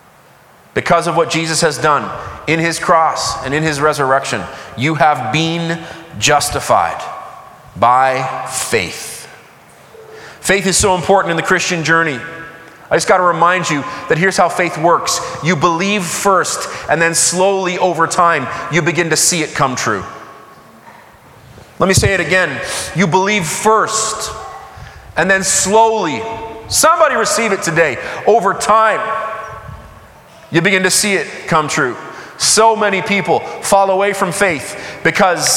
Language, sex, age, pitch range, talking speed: English, male, 30-49, 165-215 Hz, 145 wpm